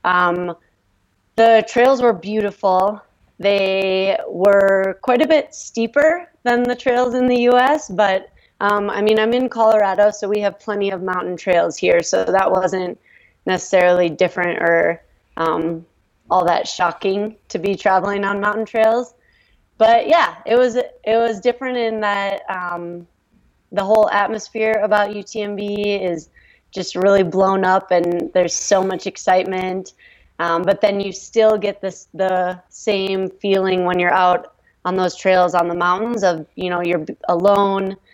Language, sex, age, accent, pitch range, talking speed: English, female, 20-39, American, 175-210 Hz, 155 wpm